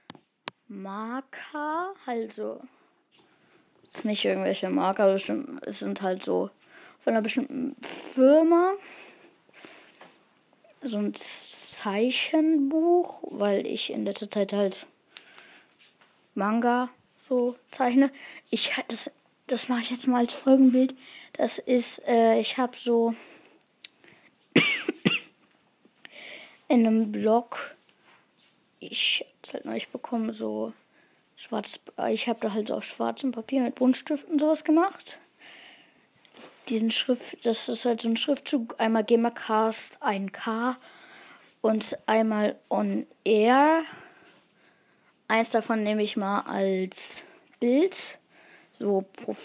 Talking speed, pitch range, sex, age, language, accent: 110 wpm, 220-290 Hz, female, 20-39, German, German